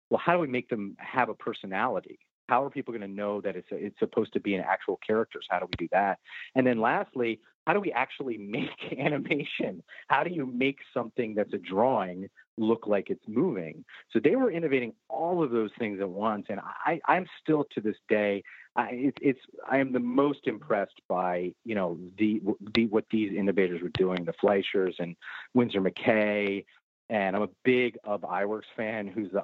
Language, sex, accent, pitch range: English, male, American, 100-135 Hz